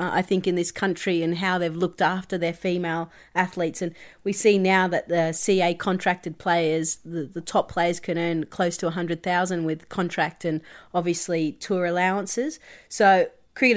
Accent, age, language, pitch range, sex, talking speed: Australian, 30-49, English, 175-205 Hz, female, 170 wpm